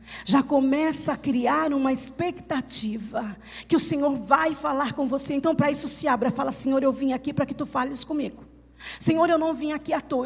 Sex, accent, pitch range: female, Brazilian, 260-310 Hz